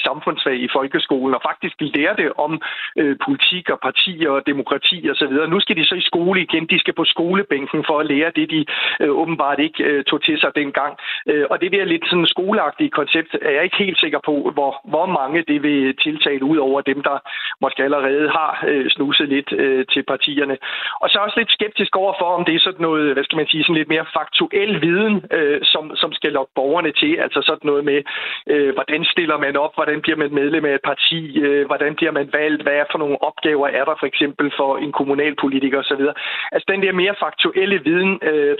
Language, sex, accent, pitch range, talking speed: Danish, male, native, 145-190 Hz, 220 wpm